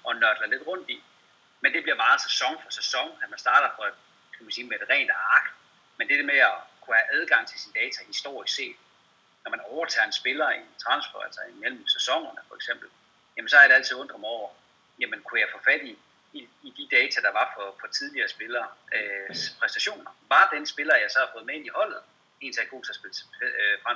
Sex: male